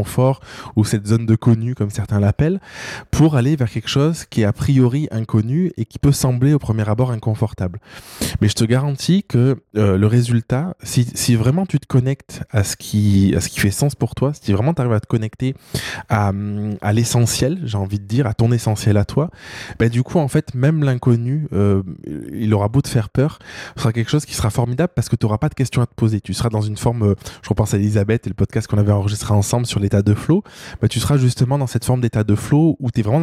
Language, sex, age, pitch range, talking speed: French, male, 20-39, 105-135 Hz, 245 wpm